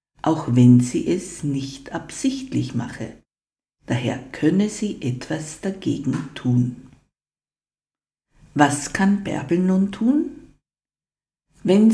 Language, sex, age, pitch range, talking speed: German, female, 50-69, 130-220 Hz, 95 wpm